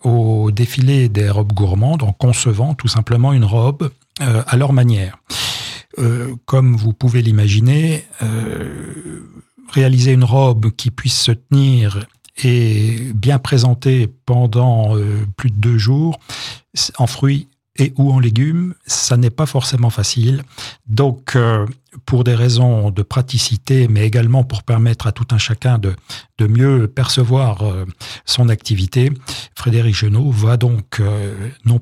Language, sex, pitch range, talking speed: French, male, 110-130 Hz, 140 wpm